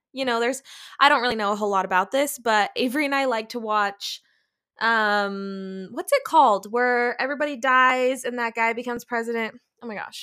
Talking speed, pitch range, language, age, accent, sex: 200 wpm, 220-280 Hz, English, 20-39, American, female